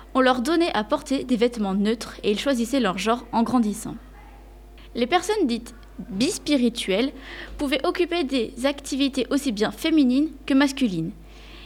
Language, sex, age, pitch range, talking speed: French, female, 20-39, 230-295 Hz, 155 wpm